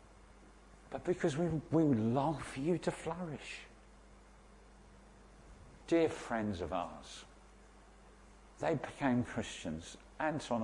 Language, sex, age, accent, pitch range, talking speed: English, male, 50-69, British, 90-130 Hz, 100 wpm